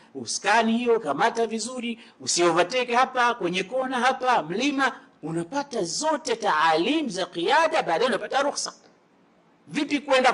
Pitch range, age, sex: 160-250 Hz, 50-69, male